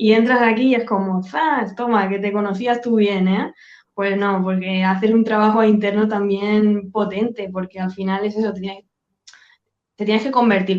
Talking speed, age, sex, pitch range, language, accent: 170 wpm, 20-39, female, 190-215 Hz, Spanish, Spanish